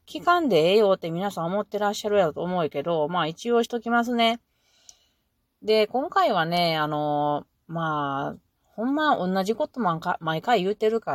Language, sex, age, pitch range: Japanese, female, 30-49, 165-210 Hz